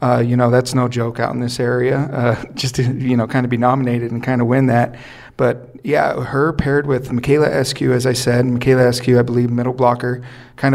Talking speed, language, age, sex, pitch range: 230 wpm, English, 40-59, male, 120-130 Hz